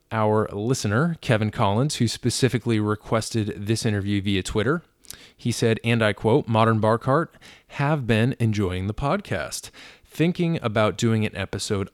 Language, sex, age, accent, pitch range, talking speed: English, male, 20-39, American, 105-130 Hz, 140 wpm